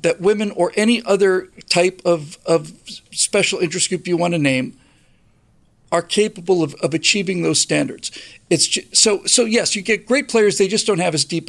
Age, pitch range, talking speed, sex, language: 50-69, 165-210 Hz, 195 wpm, male, English